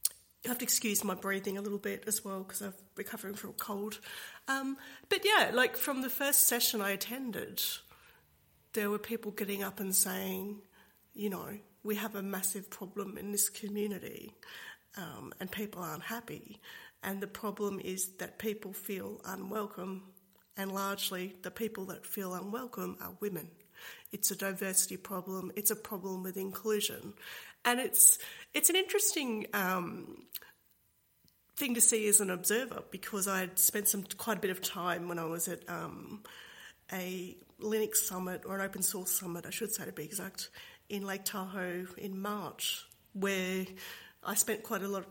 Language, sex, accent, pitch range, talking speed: English, female, Australian, 185-215 Hz, 170 wpm